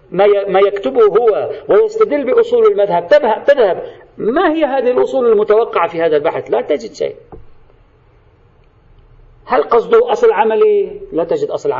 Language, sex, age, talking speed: Arabic, male, 50-69, 125 wpm